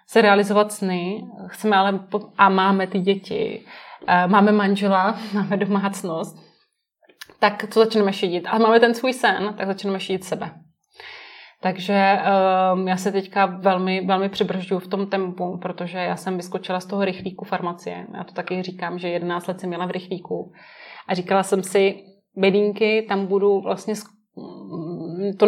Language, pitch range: Czech, 185-205 Hz